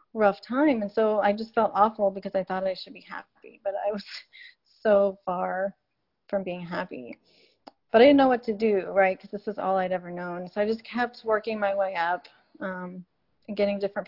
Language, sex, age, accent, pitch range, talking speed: English, female, 30-49, American, 190-220 Hz, 210 wpm